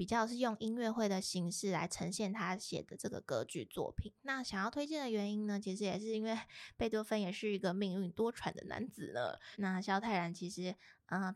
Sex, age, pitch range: female, 20-39, 190-220 Hz